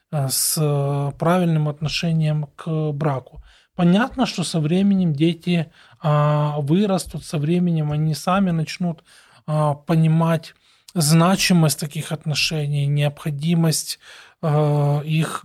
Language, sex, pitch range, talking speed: Russian, male, 150-170 Hz, 85 wpm